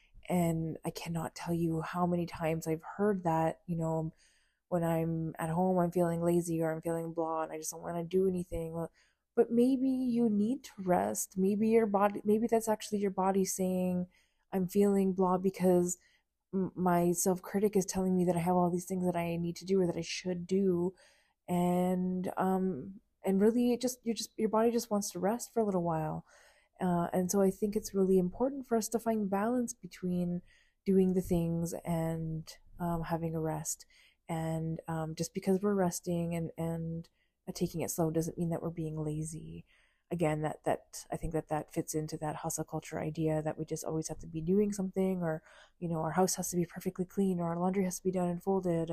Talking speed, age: 210 wpm, 20-39